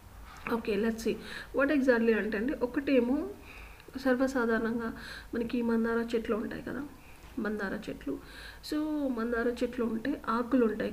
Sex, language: female, Telugu